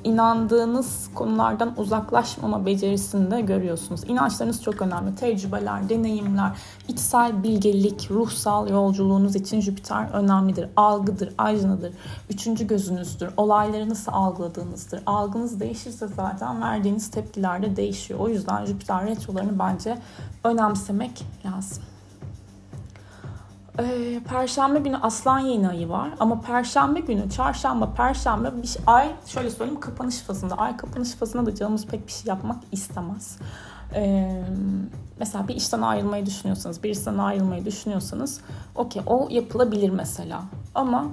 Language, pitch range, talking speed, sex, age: Turkish, 185-230 Hz, 120 wpm, female, 30-49